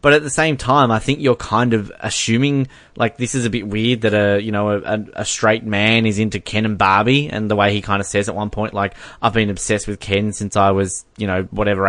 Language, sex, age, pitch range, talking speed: English, male, 20-39, 100-115 Hz, 260 wpm